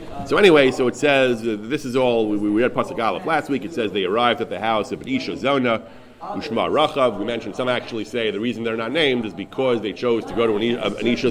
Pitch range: 105-125 Hz